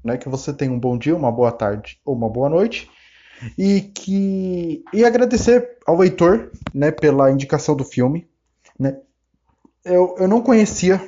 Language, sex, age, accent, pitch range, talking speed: Portuguese, male, 20-39, Brazilian, 135-205 Hz, 155 wpm